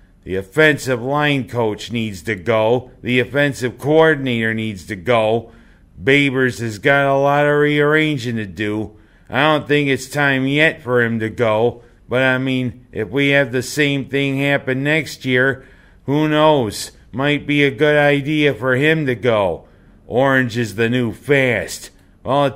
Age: 50-69